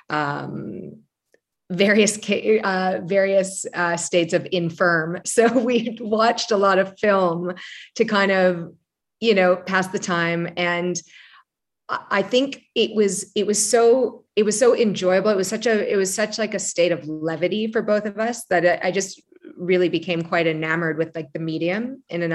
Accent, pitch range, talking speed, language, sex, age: American, 170-205 Hz, 170 wpm, English, female, 30-49